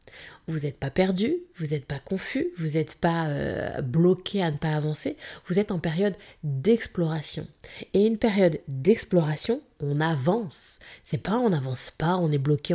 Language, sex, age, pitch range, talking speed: French, female, 20-39, 175-215 Hz, 175 wpm